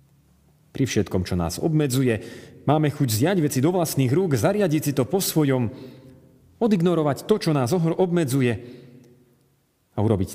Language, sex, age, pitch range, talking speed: Slovak, male, 40-59, 120-185 Hz, 140 wpm